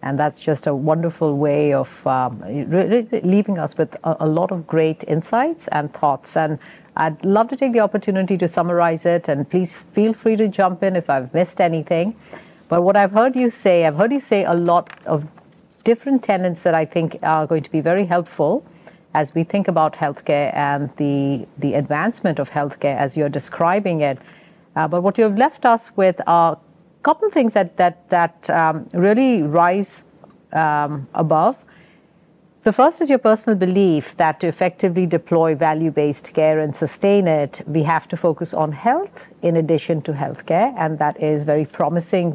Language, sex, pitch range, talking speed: English, female, 155-200 Hz, 185 wpm